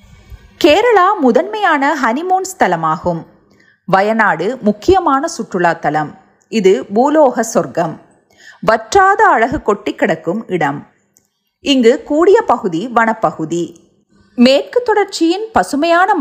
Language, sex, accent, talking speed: Tamil, female, native, 80 wpm